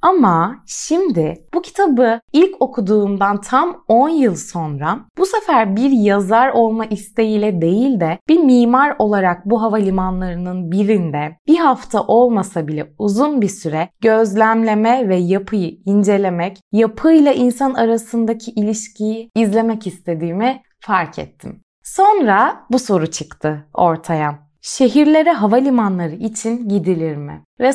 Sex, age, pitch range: female, 20-39, 180-250 Hz